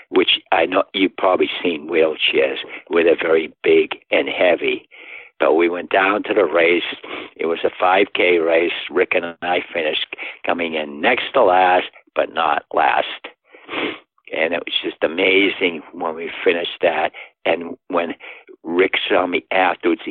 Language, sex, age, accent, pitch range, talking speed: English, male, 60-79, American, 330-440 Hz, 155 wpm